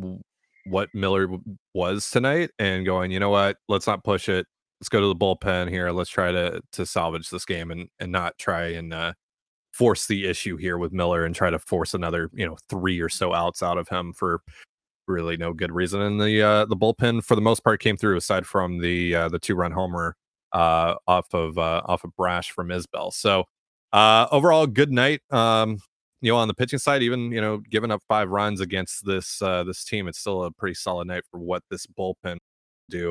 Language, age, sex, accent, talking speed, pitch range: English, 30-49, male, American, 215 wpm, 85-105 Hz